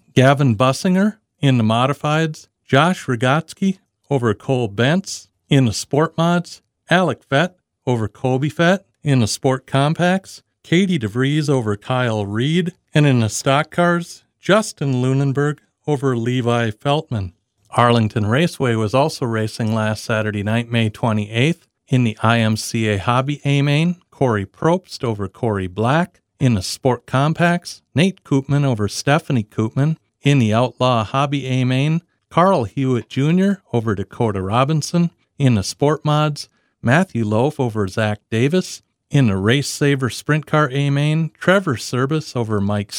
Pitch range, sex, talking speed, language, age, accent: 110-150 Hz, male, 135 wpm, English, 40-59, American